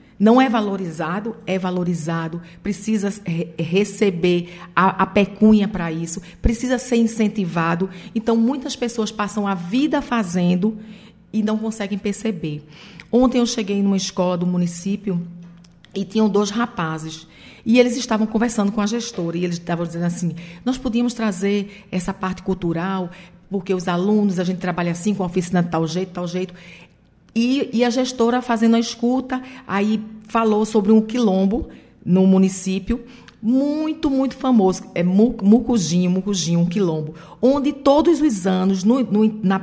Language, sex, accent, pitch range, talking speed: Portuguese, female, Brazilian, 180-235 Hz, 150 wpm